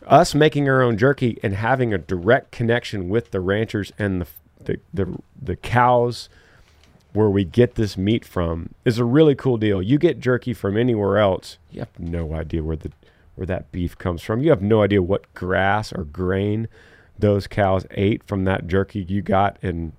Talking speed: 190 wpm